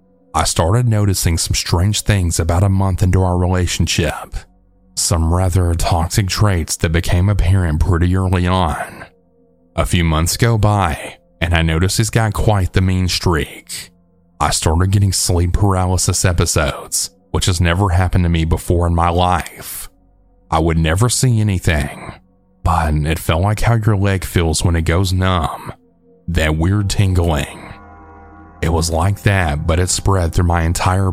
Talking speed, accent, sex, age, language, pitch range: 160 wpm, American, male, 30-49, English, 85-95 Hz